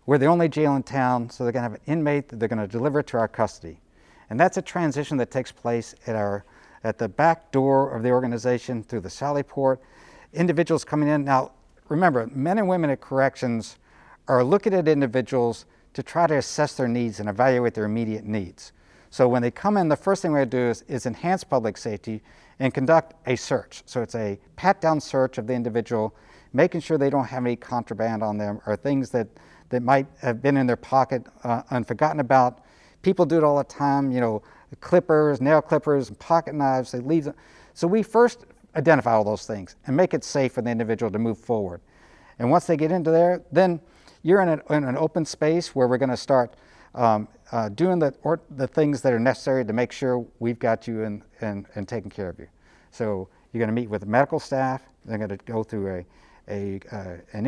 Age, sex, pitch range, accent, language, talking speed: 60-79, male, 115-150 Hz, American, English, 215 wpm